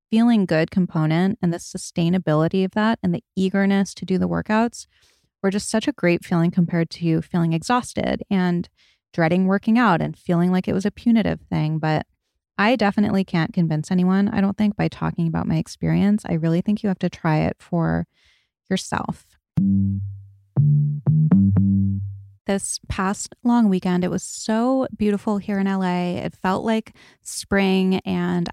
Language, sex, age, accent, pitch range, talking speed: English, female, 20-39, American, 170-205 Hz, 160 wpm